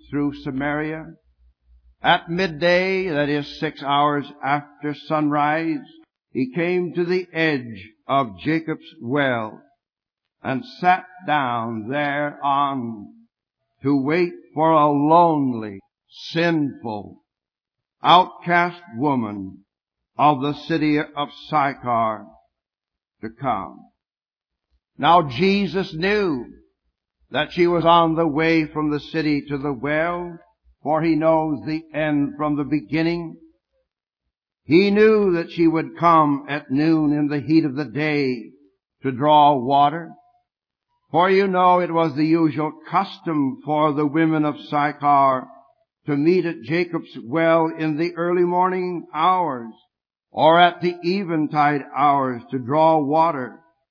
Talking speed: 120 wpm